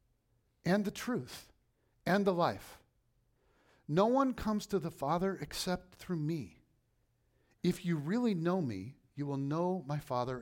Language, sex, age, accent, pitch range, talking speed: English, male, 50-69, American, 120-185 Hz, 145 wpm